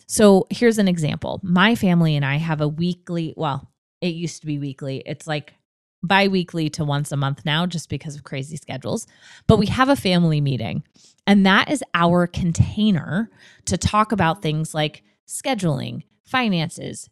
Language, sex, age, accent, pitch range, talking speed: English, female, 20-39, American, 150-200 Hz, 170 wpm